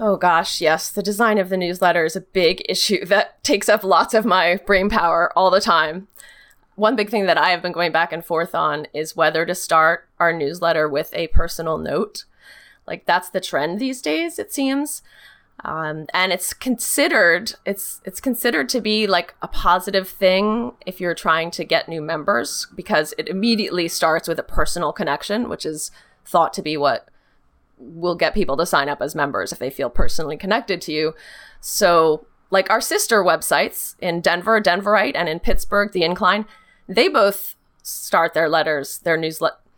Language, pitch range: English, 165-210 Hz